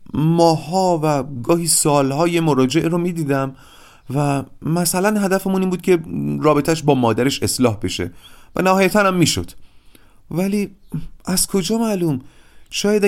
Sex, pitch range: male, 130-185 Hz